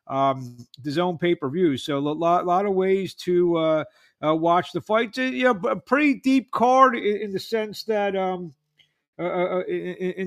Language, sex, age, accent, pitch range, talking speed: English, male, 50-69, American, 170-200 Hz, 205 wpm